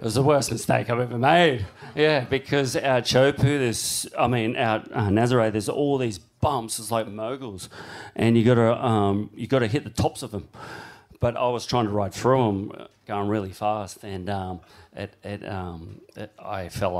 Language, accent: English, Australian